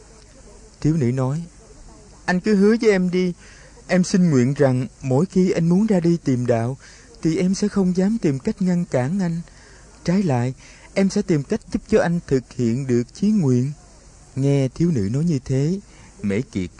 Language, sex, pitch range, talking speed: Vietnamese, male, 115-165 Hz, 190 wpm